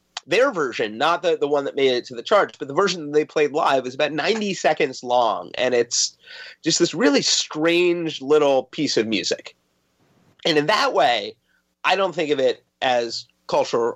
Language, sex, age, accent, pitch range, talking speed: English, male, 30-49, American, 125-175 Hz, 195 wpm